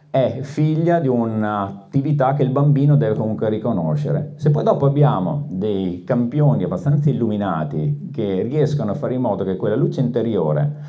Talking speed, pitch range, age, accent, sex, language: 155 wpm, 120-150 Hz, 40-59, native, male, Italian